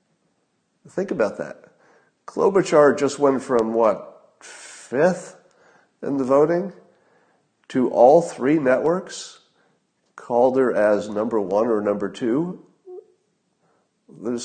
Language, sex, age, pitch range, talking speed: English, male, 50-69, 105-135 Hz, 105 wpm